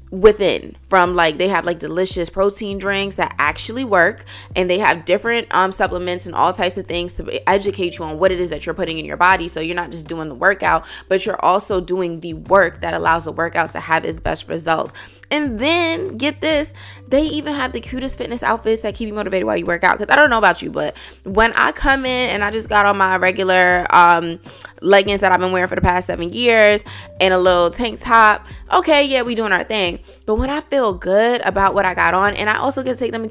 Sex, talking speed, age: female, 245 wpm, 20-39